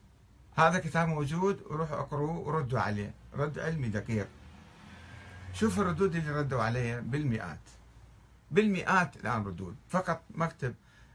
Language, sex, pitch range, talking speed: Arabic, male, 110-150 Hz, 115 wpm